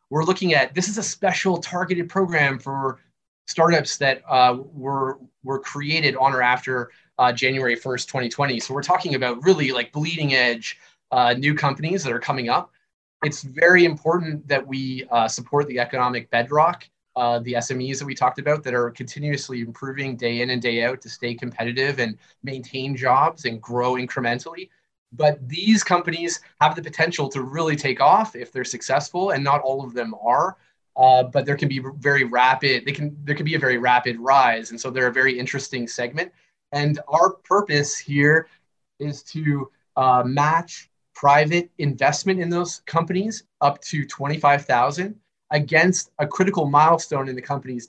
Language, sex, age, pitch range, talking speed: English, male, 20-39, 125-160 Hz, 175 wpm